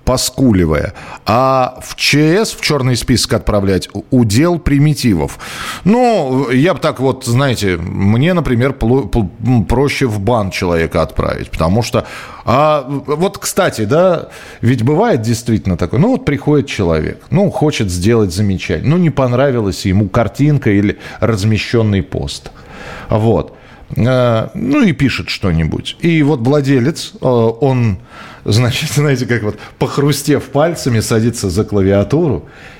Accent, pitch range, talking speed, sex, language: native, 105-150 Hz, 125 wpm, male, Russian